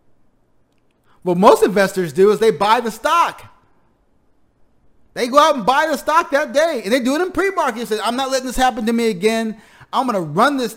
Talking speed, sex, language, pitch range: 215 wpm, male, English, 165-235 Hz